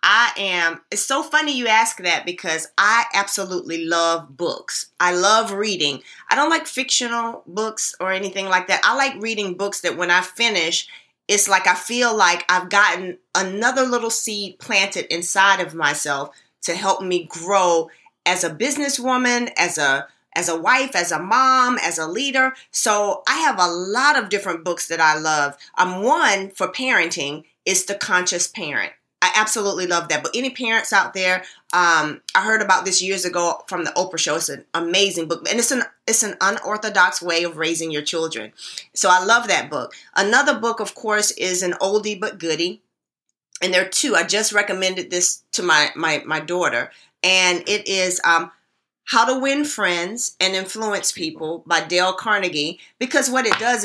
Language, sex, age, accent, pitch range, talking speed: English, female, 30-49, American, 175-225 Hz, 180 wpm